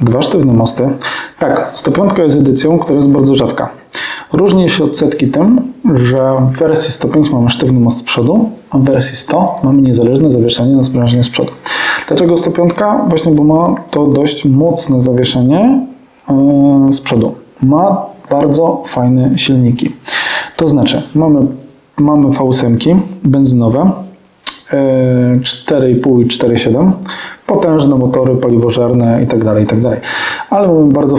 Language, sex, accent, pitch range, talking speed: Polish, male, native, 125-155 Hz, 130 wpm